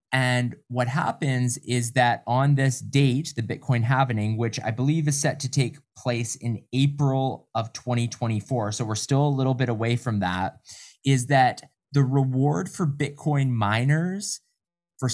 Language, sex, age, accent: English, male, 20-39, American